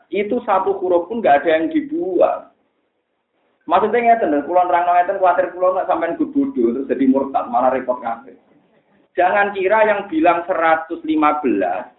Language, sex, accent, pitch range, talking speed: Indonesian, male, native, 155-240 Hz, 135 wpm